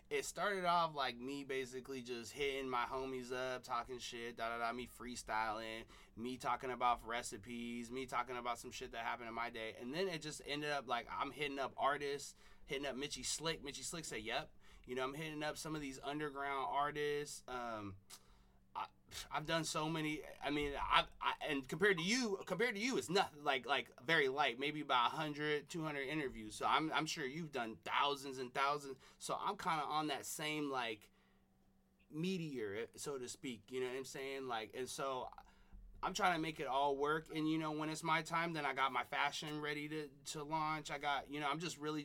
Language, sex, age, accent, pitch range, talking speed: English, male, 30-49, American, 125-155 Hz, 205 wpm